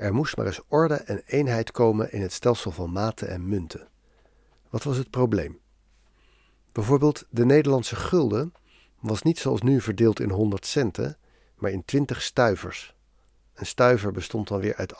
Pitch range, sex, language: 105-135 Hz, male, Dutch